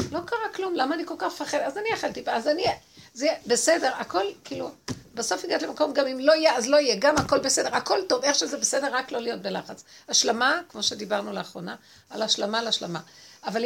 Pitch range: 205-290 Hz